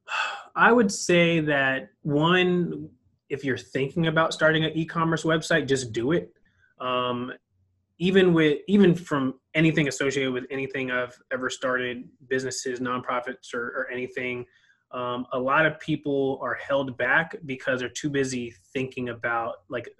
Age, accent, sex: 20-39, American, male